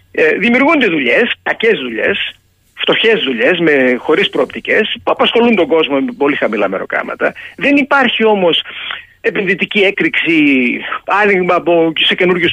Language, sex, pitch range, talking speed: Greek, male, 175-255 Hz, 120 wpm